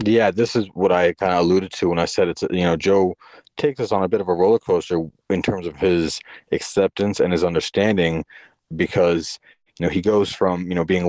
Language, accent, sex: English, American, male